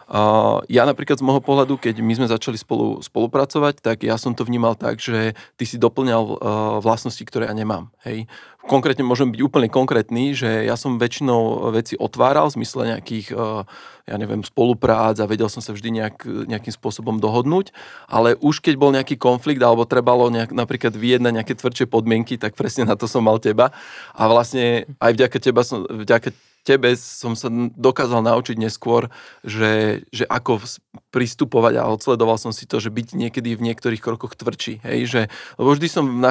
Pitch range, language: 110-125 Hz, Slovak